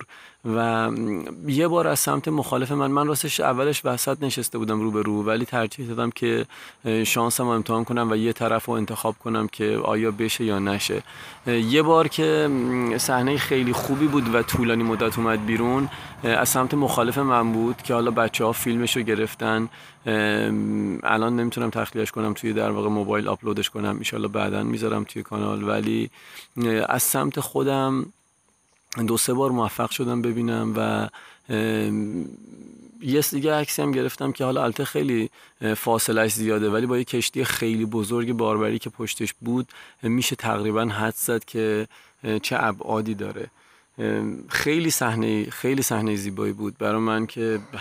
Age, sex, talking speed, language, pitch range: 30-49, male, 150 wpm, Persian, 105-120 Hz